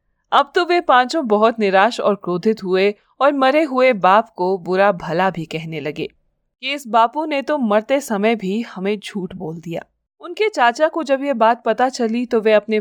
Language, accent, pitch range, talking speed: Hindi, native, 185-245 Hz, 195 wpm